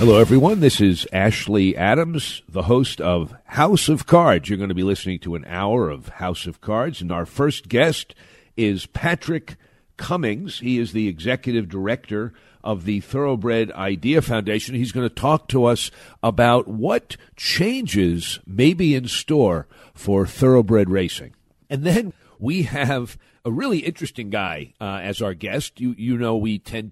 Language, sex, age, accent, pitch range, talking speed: English, male, 50-69, American, 95-135 Hz, 165 wpm